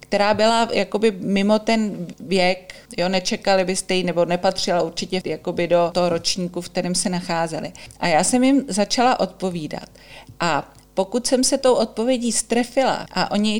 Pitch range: 185-225 Hz